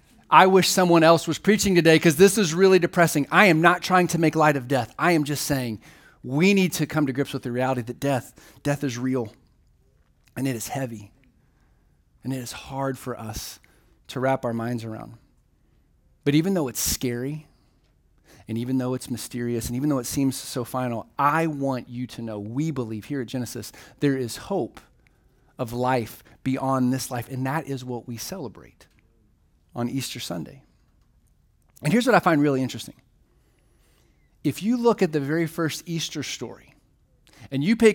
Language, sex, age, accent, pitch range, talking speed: English, male, 30-49, American, 125-175 Hz, 185 wpm